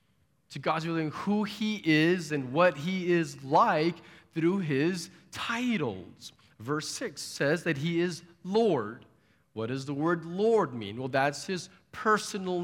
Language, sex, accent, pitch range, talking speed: English, male, American, 135-180 Hz, 145 wpm